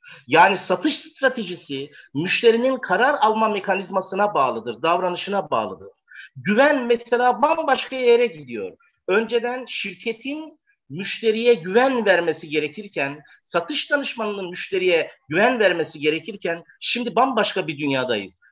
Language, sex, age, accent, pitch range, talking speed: Turkish, male, 50-69, native, 185-270 Hz, 100 wpm